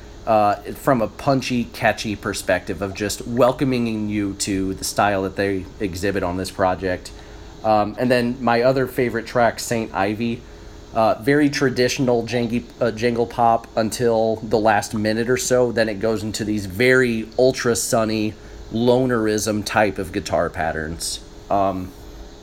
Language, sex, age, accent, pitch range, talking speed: English, male, 30-49, American, 100-120 Hz, 140 wpm